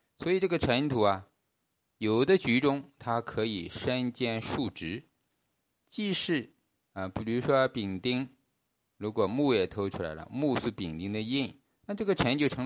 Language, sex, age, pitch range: Chinese, male, 50-69, 95-130 Hz